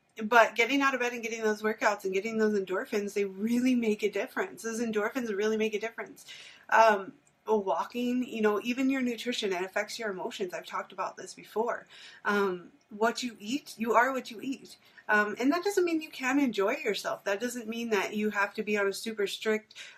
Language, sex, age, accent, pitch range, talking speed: English, female, 30-49, American, 195-235 Hz, 210 wpm